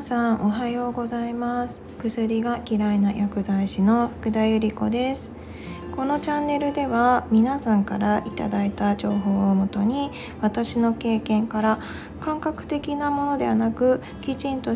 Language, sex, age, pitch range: Japanese, female, 20-39, 205-255 Hz